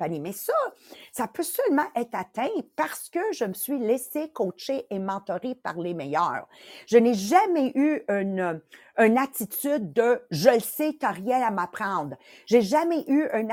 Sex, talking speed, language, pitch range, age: female, 170 wpm, English, 220-290 Hz, 50-69